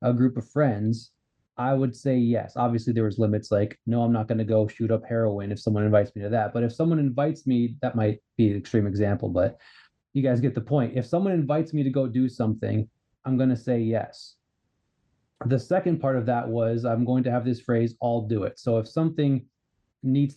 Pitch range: 115-130 Hz